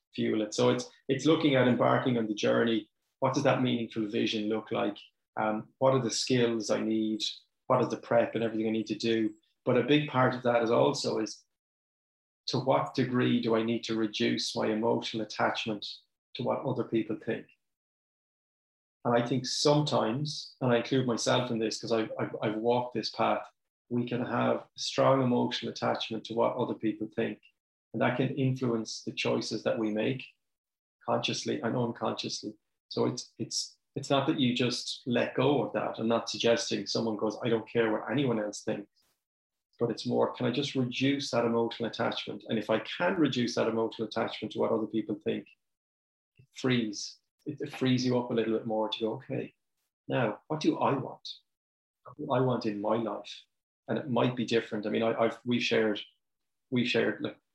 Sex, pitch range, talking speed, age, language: male, 110-125 Hz, 195 wpm, 30-49, English